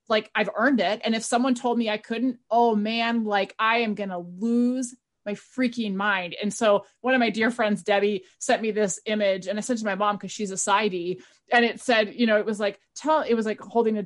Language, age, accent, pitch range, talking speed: English, 30-49, American, 200-250 Hz, 250 wpm